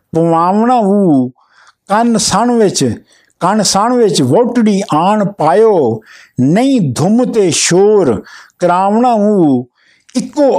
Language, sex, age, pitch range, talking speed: Punjabi, male, 60-79, 165-225 Hz, 85 wpm